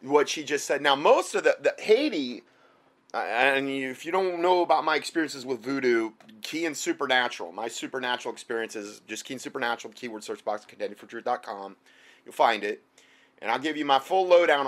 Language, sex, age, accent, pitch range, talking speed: English, male, 30-49, American, 115-155 Hz, 190 wpm